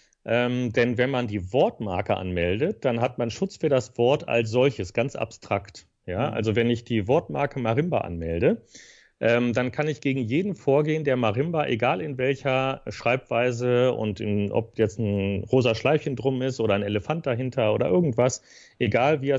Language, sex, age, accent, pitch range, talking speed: German, male, 40-59, German, 110-140 Hz, 170 wpm